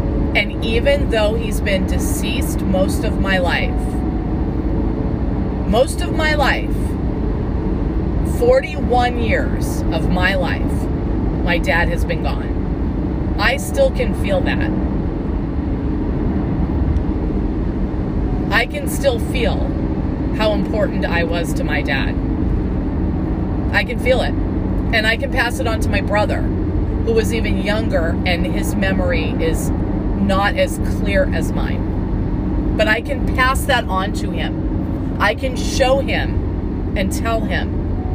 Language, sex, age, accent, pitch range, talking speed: English, female, 30-49, American, 85-100 Hz, 125 wpm